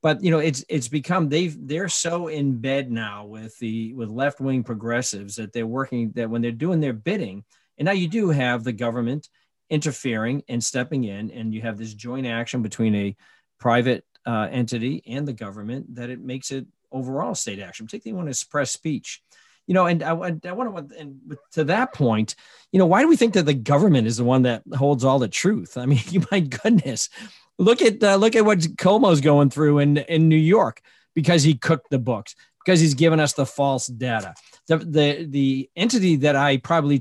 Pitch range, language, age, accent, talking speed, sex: 125-160 Hz, English, 40-59, American, 210 wpm, male